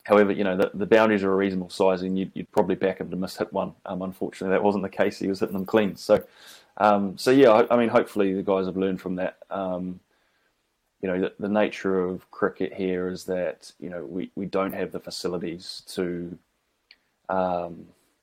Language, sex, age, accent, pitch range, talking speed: English, male, 20-39, New Zealand, 90-95 Hz, 215 wpm